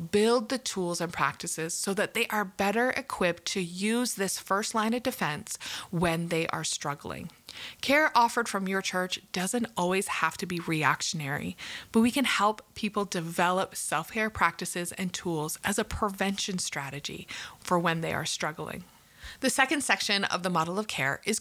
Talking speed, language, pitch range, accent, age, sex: 170 wpm, English, 185-225 Hz, American, 30-49, female